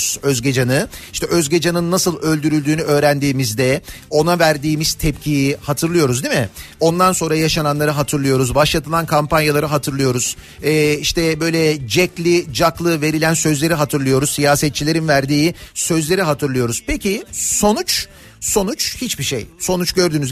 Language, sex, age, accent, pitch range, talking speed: Turkish, male, 40-59, native, 140-185 Hz, 110 wpm